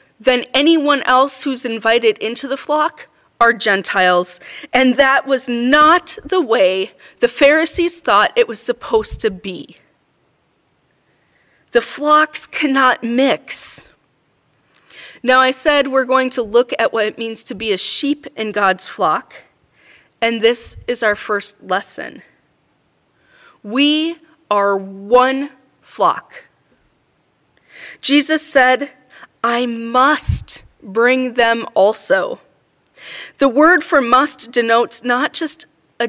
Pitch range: 220-285 Hz